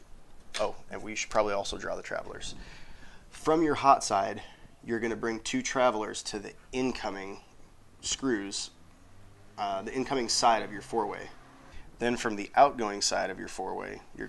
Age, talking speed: 20-39, 165 wpm